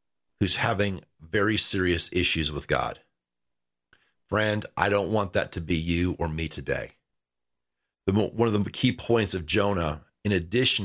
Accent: American